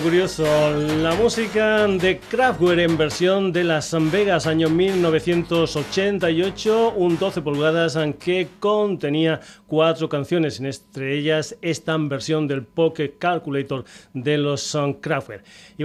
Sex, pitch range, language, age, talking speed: male, 140-170 Hz, Spanish, 30-49, 115 wpm